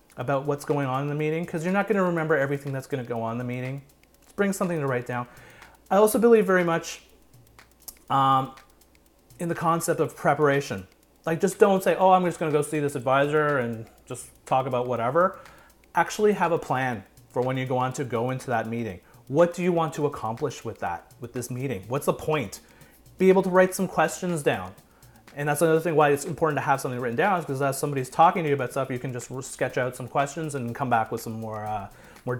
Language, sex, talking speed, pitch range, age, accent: English, male, 230 wpm, 125-175 Hz, 30-49, American